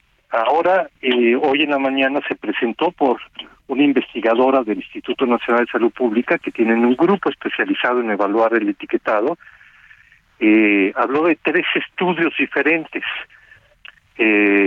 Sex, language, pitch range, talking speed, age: male, Spanish, 120-160 Hz, 135 wpm, 50-69